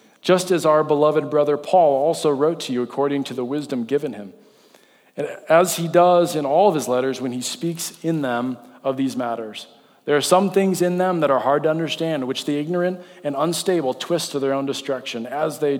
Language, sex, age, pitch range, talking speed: English, male, 40-59, 125-155 Hz, 215 wpm